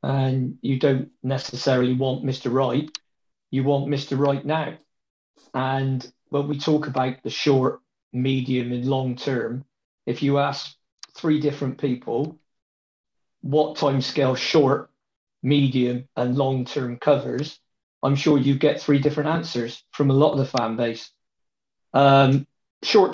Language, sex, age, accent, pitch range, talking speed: English, male, 40-59, British, 130-150 Hz, 135 wpm